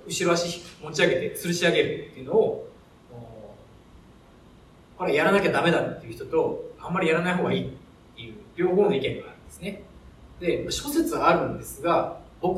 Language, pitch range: Japanese, 155-210 Hz